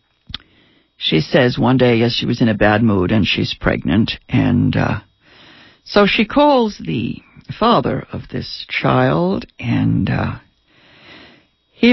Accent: American